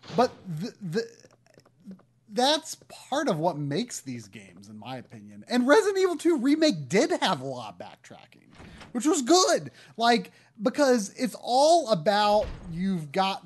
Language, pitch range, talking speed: English, 155-220 Hz, 150 wpm